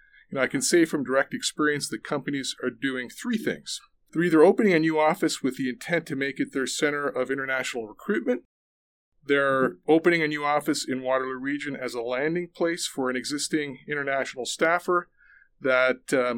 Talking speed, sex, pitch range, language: 185 wpm, male, 130-160 Hz, English